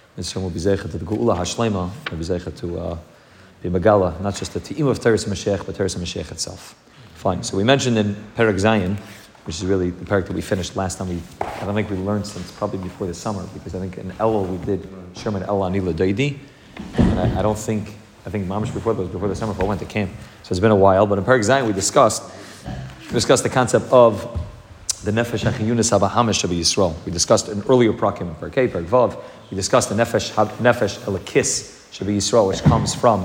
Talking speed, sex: 200 wpm, male